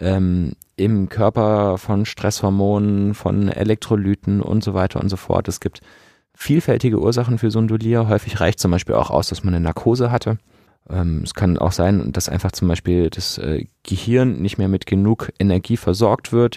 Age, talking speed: 30-49, 165 wpm